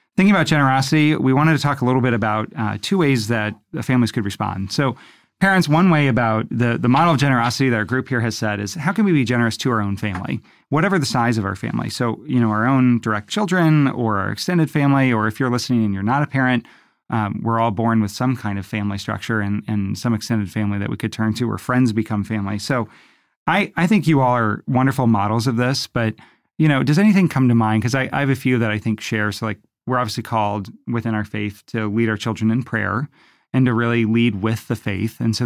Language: English